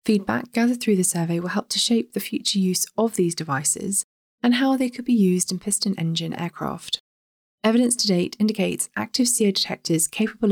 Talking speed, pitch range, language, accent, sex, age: 185 wpm, 165-210 Hz, English, British, female, 20-39